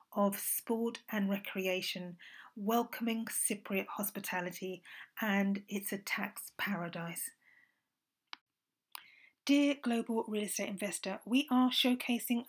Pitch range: 210-255 Hz